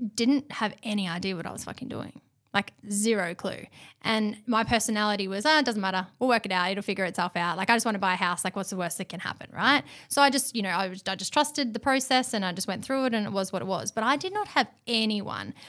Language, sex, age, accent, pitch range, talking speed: English, female, 10-29, Australian, 195-245 Hz, 275 wpm